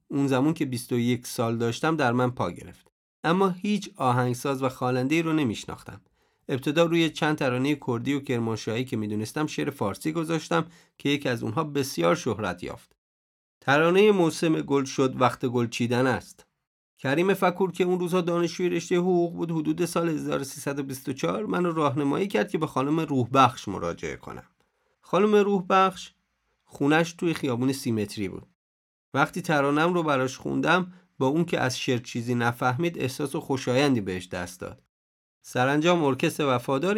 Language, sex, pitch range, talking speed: Persian, male, 125-165 Hz, 155 wpm